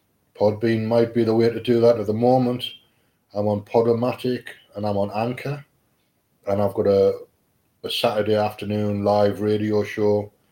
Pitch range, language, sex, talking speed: 105-120 Hz, English, male, 160 wpm